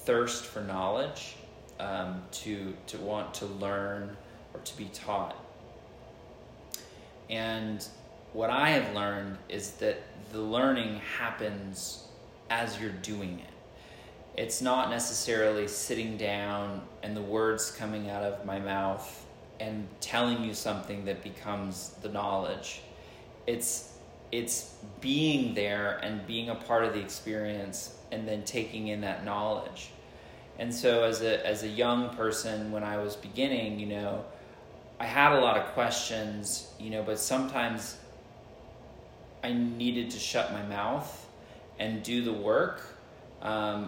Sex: male